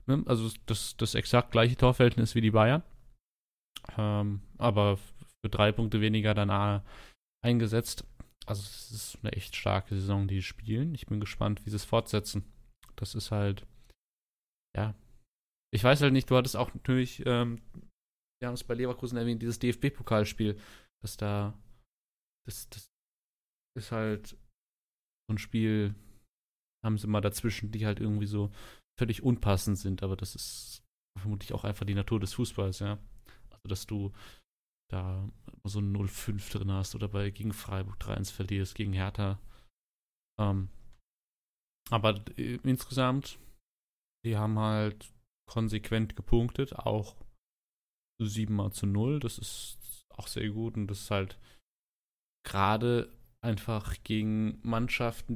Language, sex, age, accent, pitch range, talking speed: German, male, 30-49, German, 105-120 Hz, 140 wpm